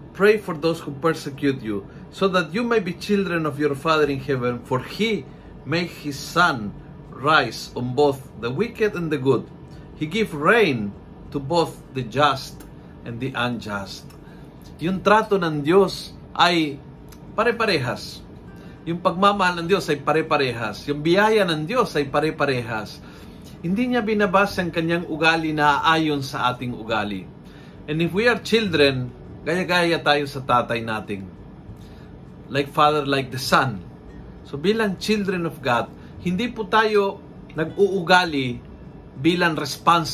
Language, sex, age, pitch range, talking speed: Filipino, male, 50-69, 135-180 Hz, 140 wpm